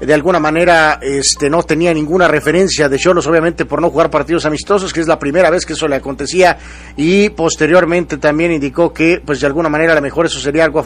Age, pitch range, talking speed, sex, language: 50-69, 150-175 Hz, 225 wpm, male, English